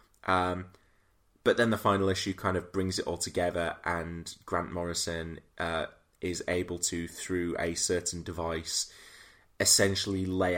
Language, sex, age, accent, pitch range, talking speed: English, male, 20-39, British, 85-100 Hz, 140 wpm